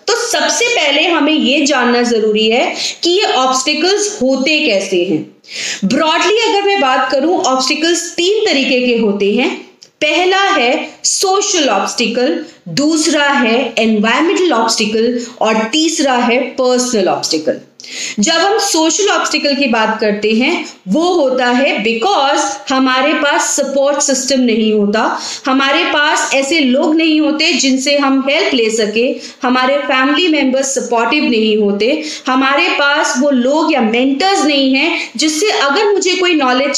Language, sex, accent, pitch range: English, female, Indian, 230-310 Hz